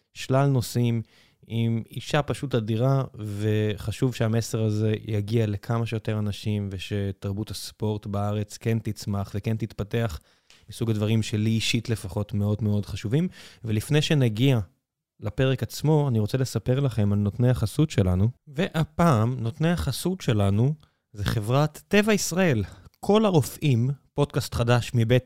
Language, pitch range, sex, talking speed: Hebrew, 110-135 Hz, male, 125 wpm